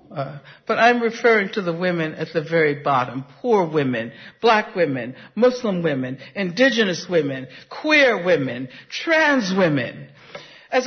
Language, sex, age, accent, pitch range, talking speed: English, female, 60-79, American, 160-250 Hz, 130 wpm